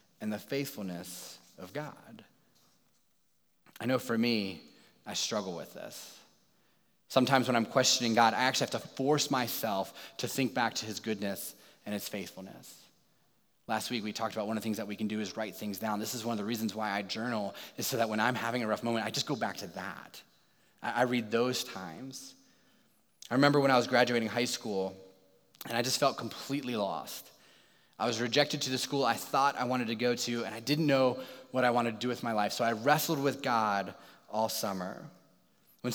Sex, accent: male, American